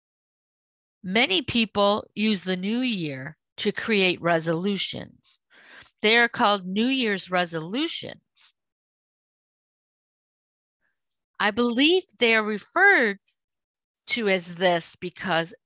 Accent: American